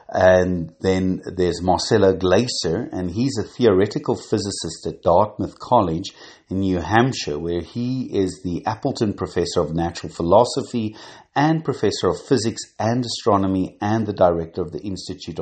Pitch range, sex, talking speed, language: 85-115 Hz, male, 145 wpm, English